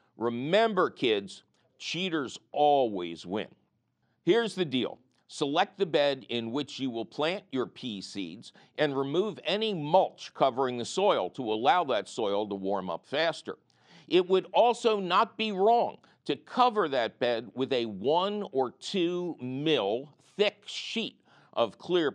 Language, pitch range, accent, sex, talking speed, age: English, 130-200 Hz, American, male, 145 wpm, 50-69